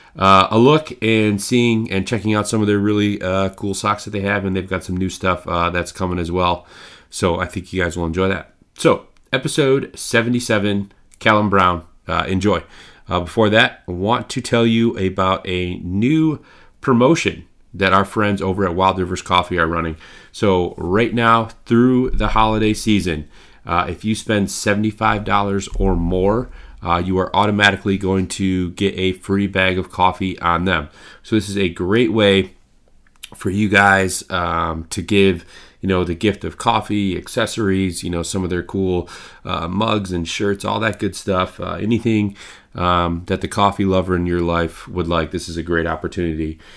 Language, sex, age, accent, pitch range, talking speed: English, male, 30-49, American, 90-105 Hz, 185 wpm